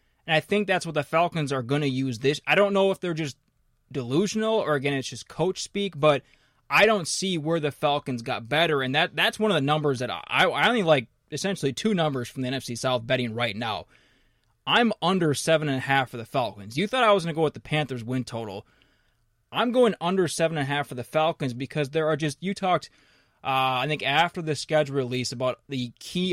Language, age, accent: English, 20-39, American